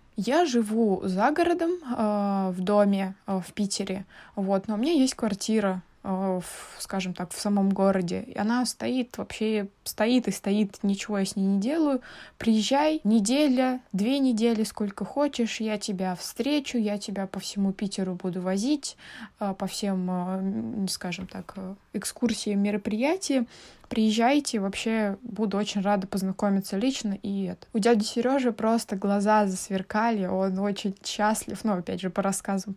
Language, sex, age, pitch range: Russian, female, 20-39, 195-230 Hz